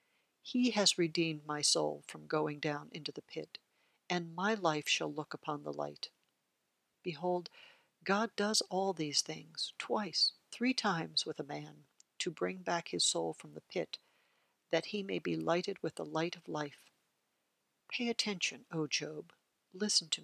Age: 60-79